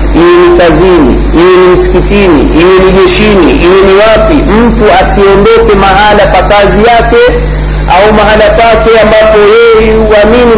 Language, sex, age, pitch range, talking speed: Swahili, male, 50-69, 185-250 Hz, 115 wpm